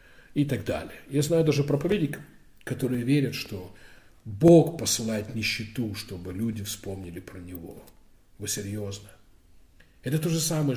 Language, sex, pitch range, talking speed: Russian, male, 95-130 Hz, 135 wpm